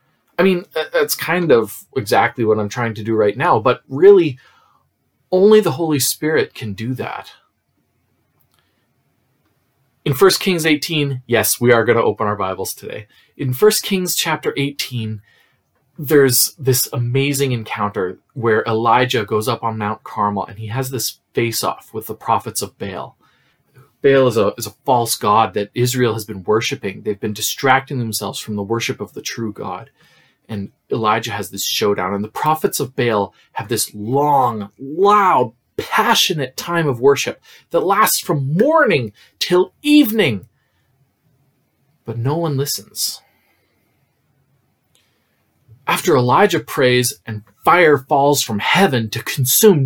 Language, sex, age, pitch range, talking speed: English, male, 30-49, 110-145 Hz, 145 wpm